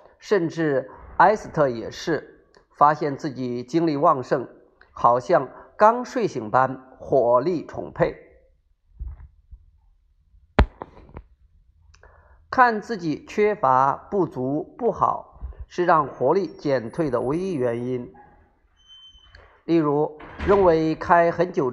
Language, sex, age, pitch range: Chinese, male, 50-69, 120-165 Hz